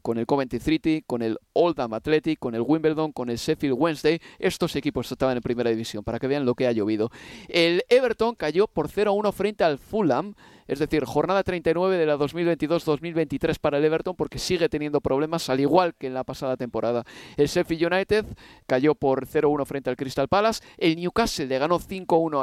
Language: Spanish